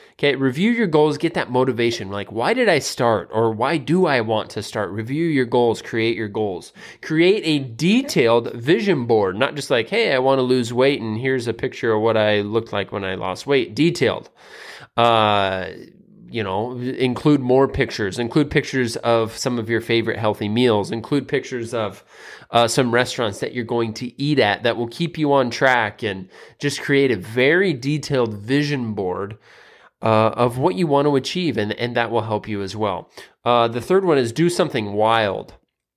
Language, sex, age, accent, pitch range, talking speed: English, male, 20-39, American, 110-145 Hz, 195 wpm